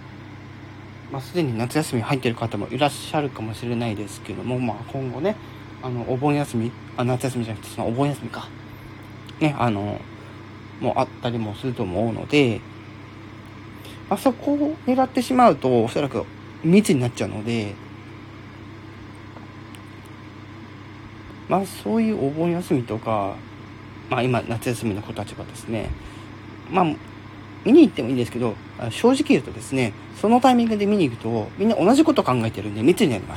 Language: Japanese